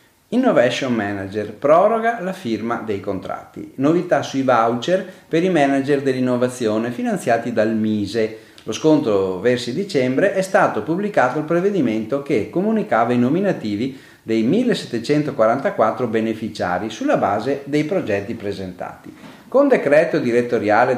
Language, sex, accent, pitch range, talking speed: Italian, male, native, 110-165 Hz, 115 wpm